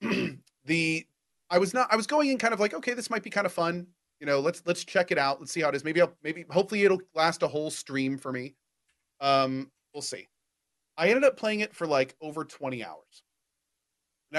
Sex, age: male, 30-49